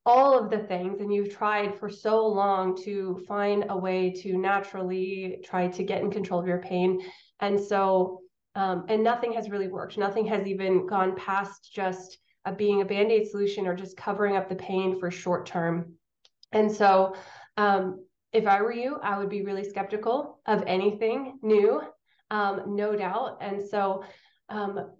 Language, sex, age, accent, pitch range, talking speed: English, female, 20-39, American, 185-210 Hz, 175 wpm